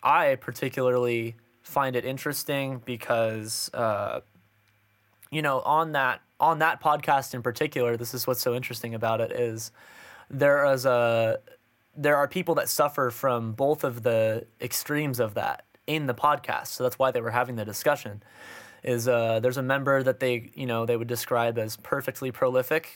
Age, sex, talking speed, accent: 20-39, male, 170 wpm, American